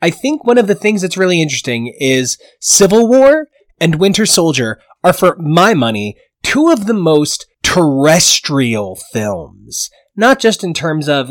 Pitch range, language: 145-215 Hz, English